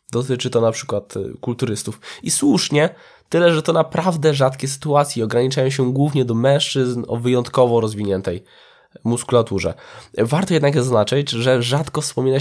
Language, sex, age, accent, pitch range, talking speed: Polish, male, 20-39, native, 120-140 Hz, 135 wpm